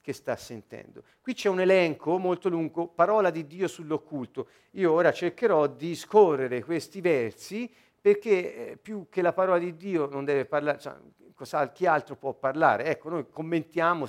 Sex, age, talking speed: male, 50-69, 160 wpm